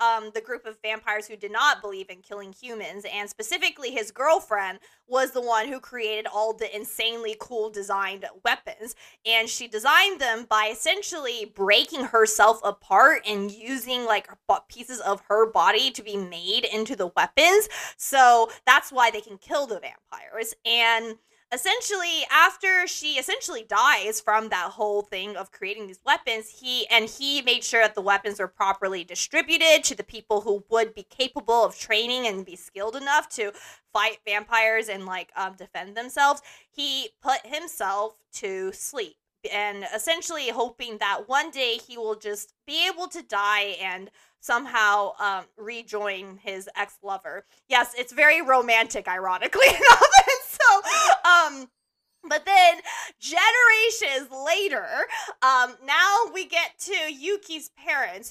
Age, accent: 20-39, American